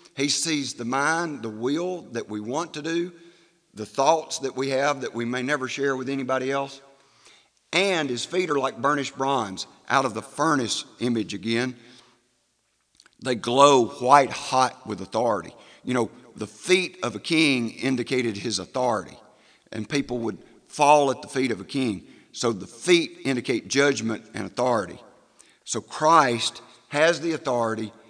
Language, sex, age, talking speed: English, male, 50-69, 160 wpm